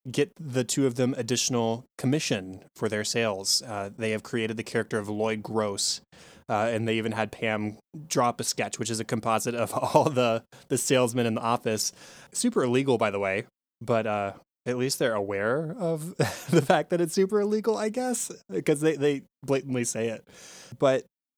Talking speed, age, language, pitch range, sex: 190 wpm, 20-39, English, 110-135 Hz, male